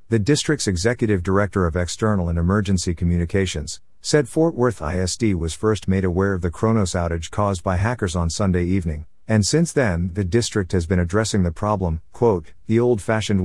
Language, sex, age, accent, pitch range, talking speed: English, male, 50-69, American, 90-115 Hz, 180 wpm